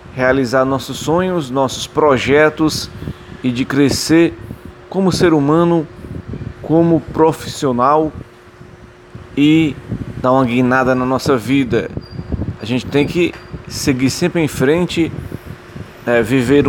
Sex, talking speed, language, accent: male, 110 wpm, English, Brazilian